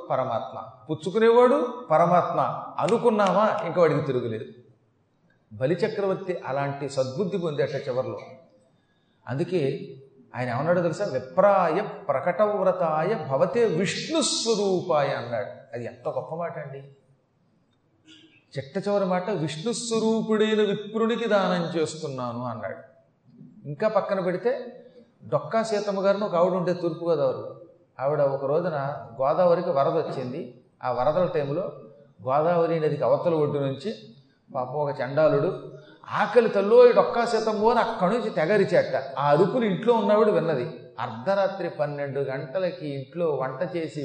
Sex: male